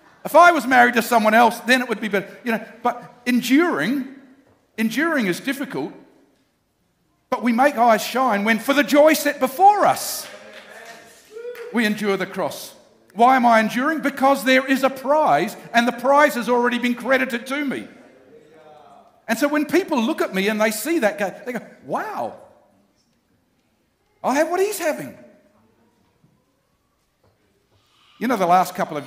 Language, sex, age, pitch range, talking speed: English, male, 50-69, 175-265 Hz, 160 wpm